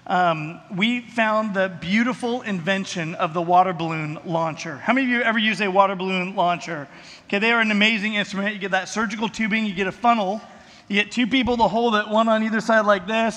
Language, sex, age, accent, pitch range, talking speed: English, male, 30-49, American, 190-235 Hz, 225 wpm